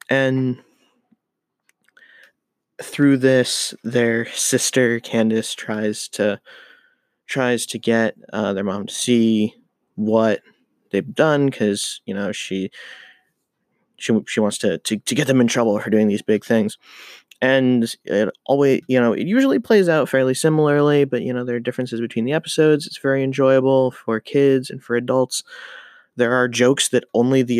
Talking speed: 155 wpm